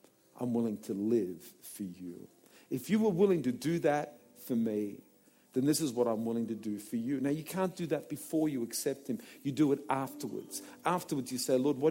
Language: English